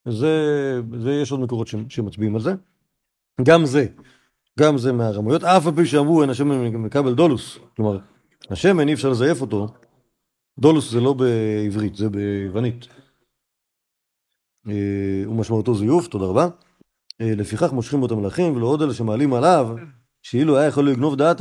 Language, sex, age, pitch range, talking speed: Hebrew, male, 40-59, 115-160 Hz, 145 wpm